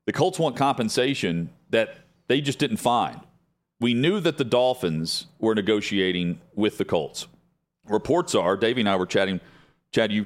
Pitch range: 100-125 Hz